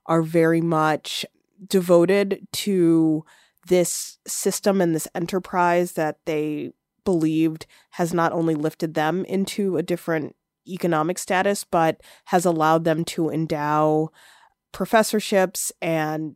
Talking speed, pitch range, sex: 115 wpm, 160-195 Hz, female